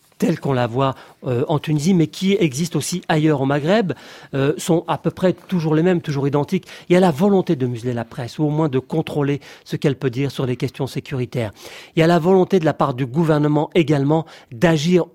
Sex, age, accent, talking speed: male, 40-59, French, 230 wpm